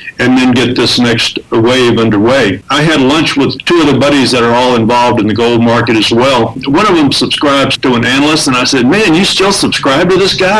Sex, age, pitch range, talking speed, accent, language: male, 50-69, 115-150 Hz, 240 wpm, American, English